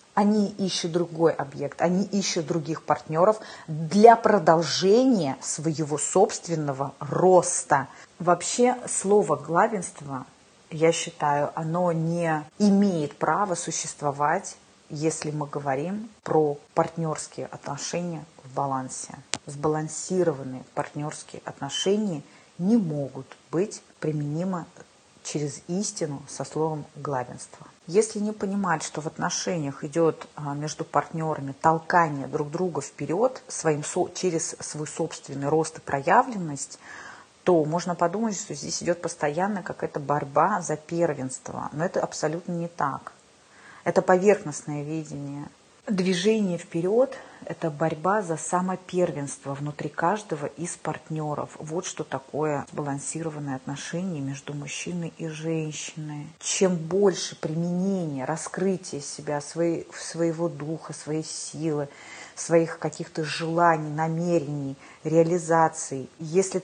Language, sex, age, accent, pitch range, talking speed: Russian, female, 30-49, native, 150-180 Hz, 105 wpm